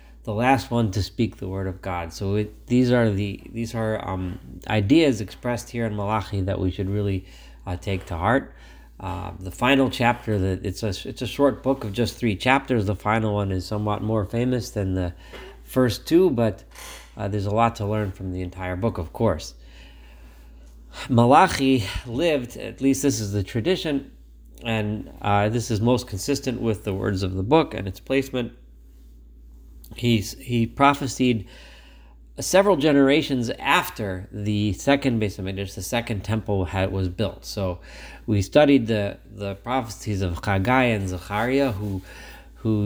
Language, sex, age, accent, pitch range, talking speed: English, male, 30-49, American, 95-120 Hz, 165 wpm